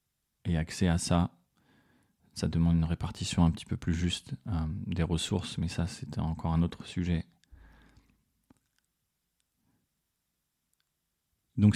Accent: French